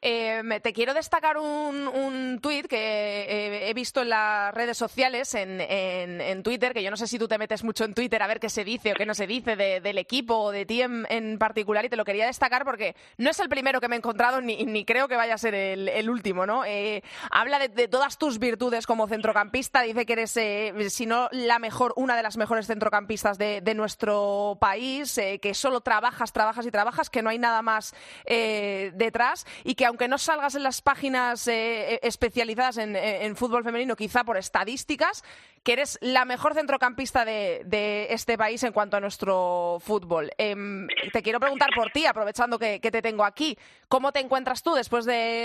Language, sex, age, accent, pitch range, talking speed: Spanish, female, 20-39, Spanish, 215-250 Hz, 215 wpm